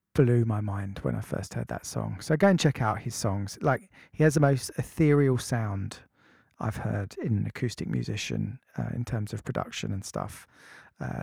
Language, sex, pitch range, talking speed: English, male, 120-155 Hz, 190 wpm